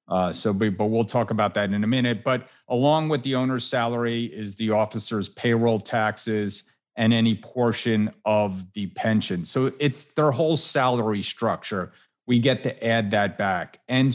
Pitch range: 110-130 Hz